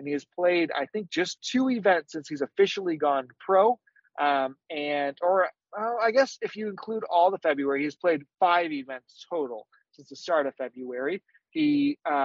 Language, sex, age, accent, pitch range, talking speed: English, male, 30-49, American, 145-200 Hz, 185 wpm